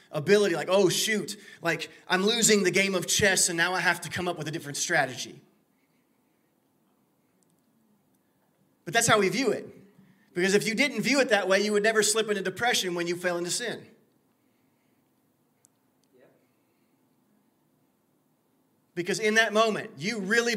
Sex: male